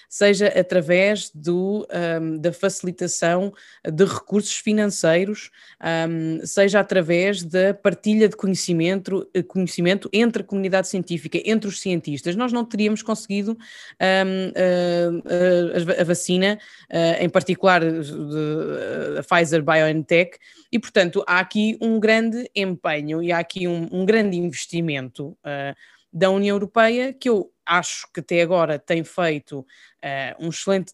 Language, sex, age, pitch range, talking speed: Portuguese, female, 20-39, 165-200 Hz, 120 wpm